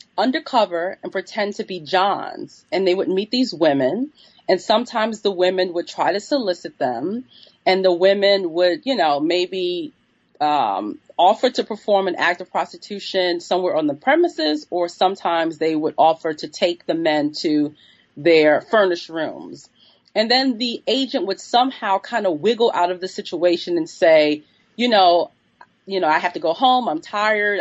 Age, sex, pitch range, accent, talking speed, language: 30-49, female, 175-230 Hz, American, 175 wpm, English